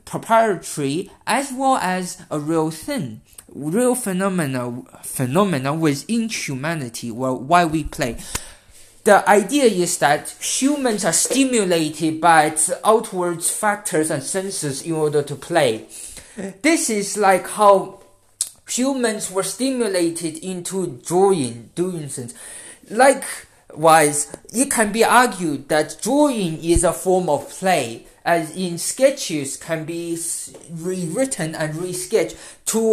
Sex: male